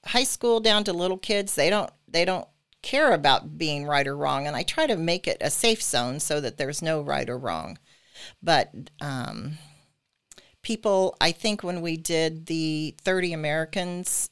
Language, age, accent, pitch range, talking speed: English, 40-59, American, 145-180 Hz, 180 wpm